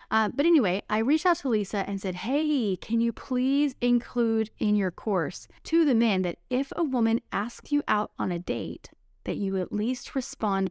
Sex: female